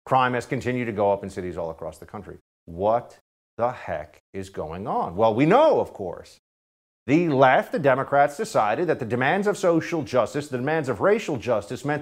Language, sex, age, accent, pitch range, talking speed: English, male, 50-69, American, 100-165 Hz, 200 wpm